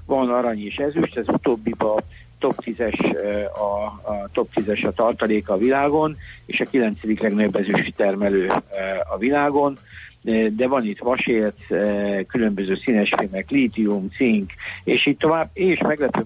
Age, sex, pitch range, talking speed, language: 60-79, male, 105-125 Hz, 140 wpm, Hungarian